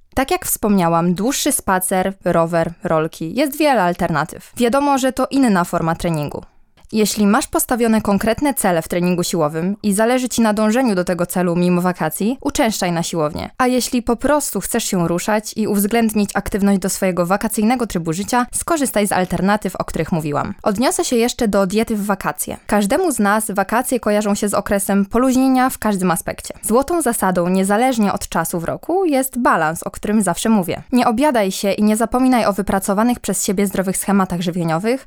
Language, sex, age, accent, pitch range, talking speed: Polish, female, 20-39, native, 185-250 Hz, 175 wpm